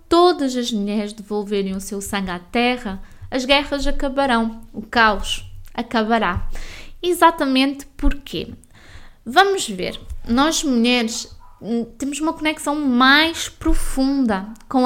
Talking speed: 110 wpm